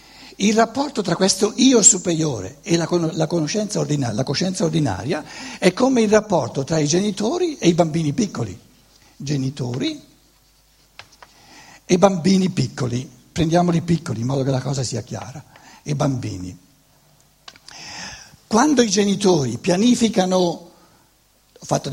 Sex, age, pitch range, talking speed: male, 60-79, 140-220 Hz, 120 wpm